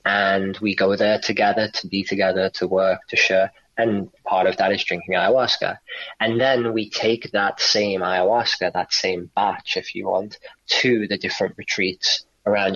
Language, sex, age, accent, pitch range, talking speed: English, male, 20-39, British, 95-110 Hz, 175 wpm